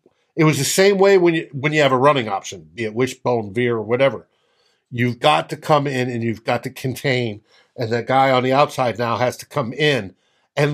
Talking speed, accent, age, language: 225 wpm, American, 60-79, English